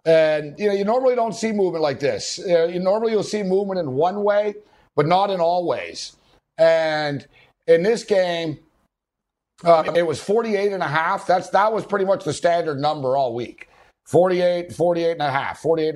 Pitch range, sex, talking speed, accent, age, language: 160-205 Hz, male, 190 wpm, American, 60-79, English